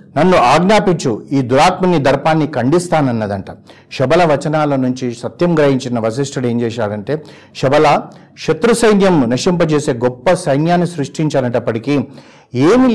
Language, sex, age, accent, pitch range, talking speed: Telugu, male, 50-69, native, 125-160 Hz, 100 wpm